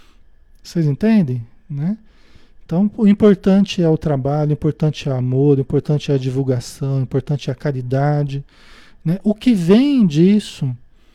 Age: 40-59